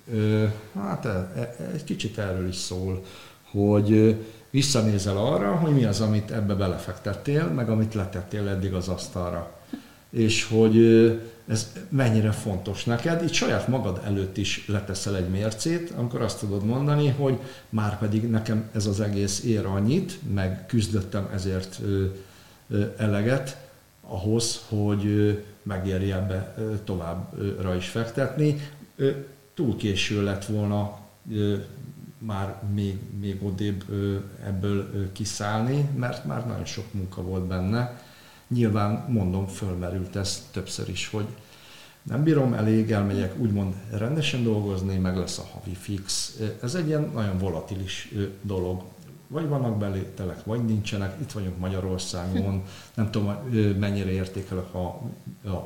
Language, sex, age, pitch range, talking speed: Hungarian, male, 50-69, 95-115 Hz, 125 wpm